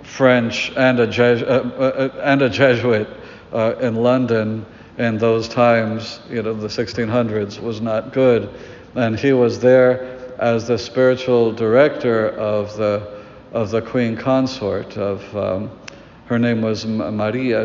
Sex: male